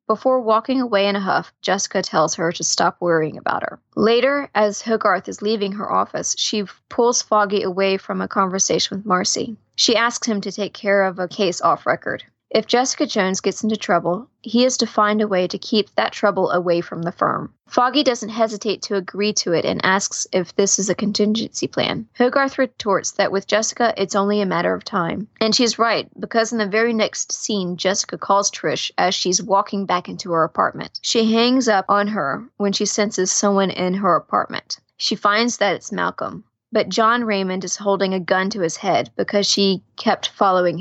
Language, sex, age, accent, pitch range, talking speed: English, female, 20-39, American, 190-220 Hz, 200 wpm